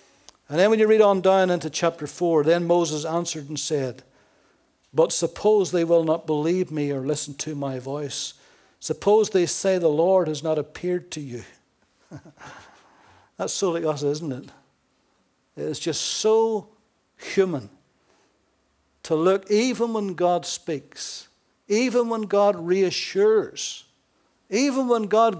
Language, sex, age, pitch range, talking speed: English, male, 60-79, 155-205 Hz, 145 wpm